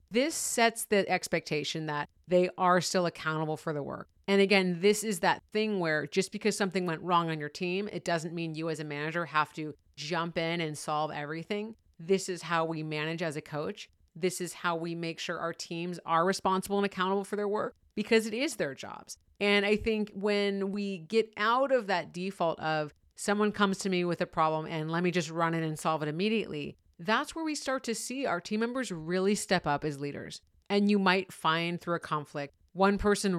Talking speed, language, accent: 215 wpm, English, American